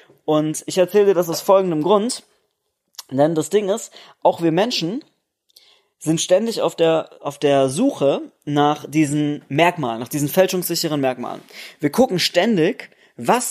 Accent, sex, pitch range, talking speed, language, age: German, male, 145-190 Hz, 140 wpm, German, 20-39